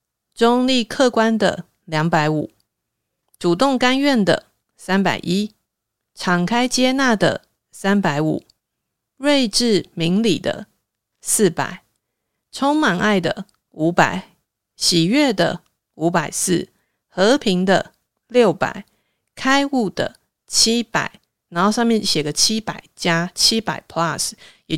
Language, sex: Chinese, female